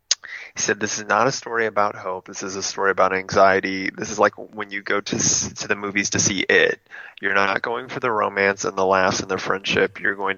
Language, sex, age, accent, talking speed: English, male, 20-39, American, 235 wpm